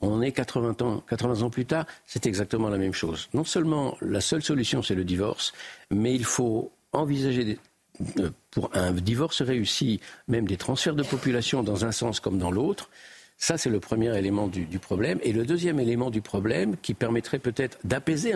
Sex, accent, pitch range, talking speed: male, French, 110-140 Hz, 185 wpm